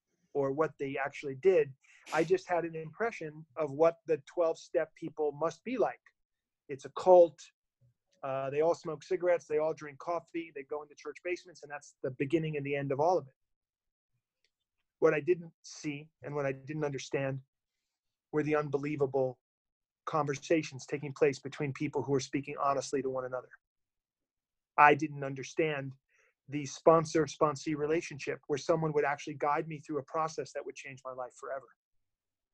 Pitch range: 140-165 Hz